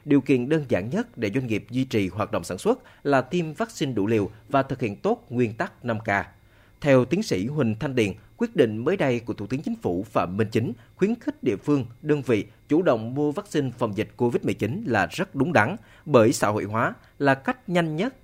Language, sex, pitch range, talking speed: Vietnamese, male, 110-150 Hz, 225 wpm